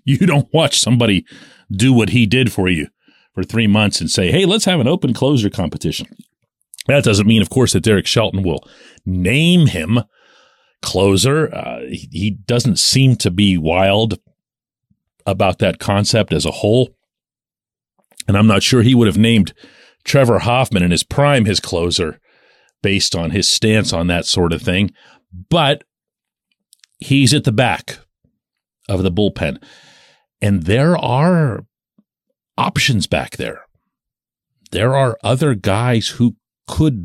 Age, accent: 40-59, American